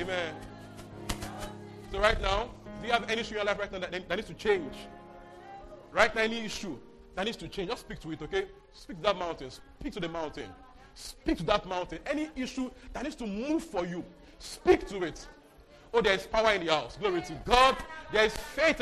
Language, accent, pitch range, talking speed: English, Nigerian, 220-315 Hz, 215 wpm